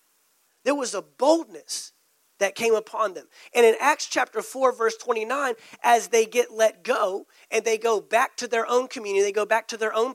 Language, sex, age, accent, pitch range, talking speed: English, male, 30-49, American, 210-285 Hz, 200 wpm